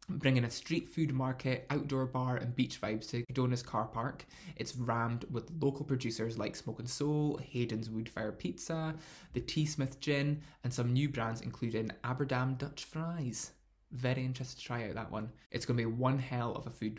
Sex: male